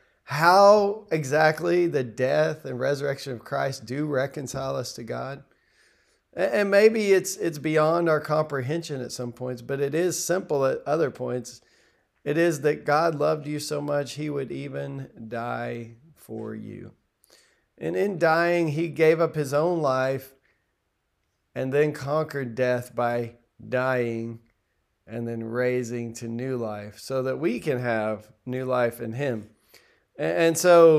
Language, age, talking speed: English, 40-59, 145 wpm